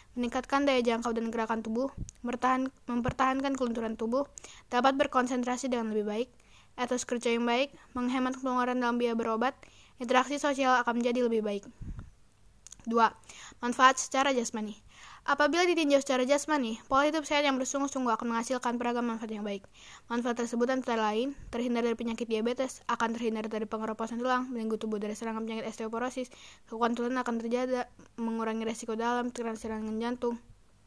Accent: native